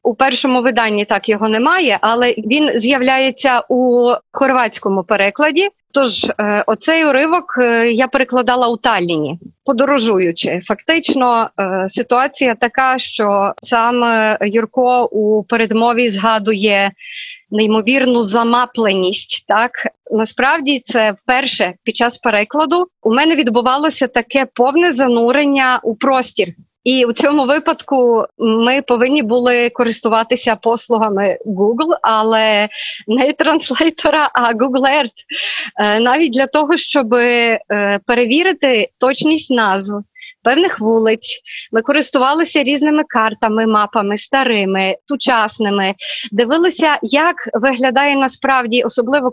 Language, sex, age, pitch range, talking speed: Ukrainian, female, 30-49, 220-275 Hz, 100 wpm